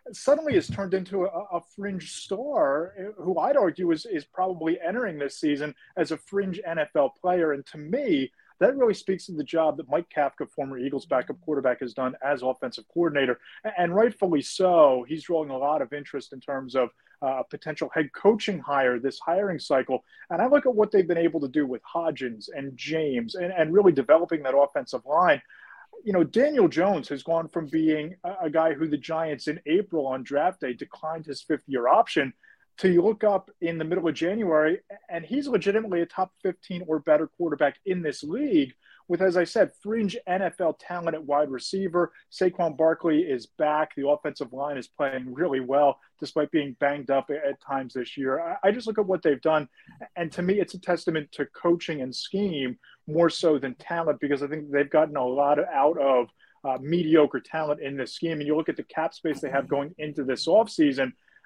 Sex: male